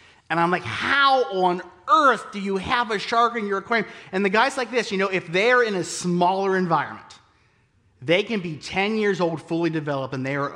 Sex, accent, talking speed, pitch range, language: male, American, 215 wpm, 110-170 Hz, English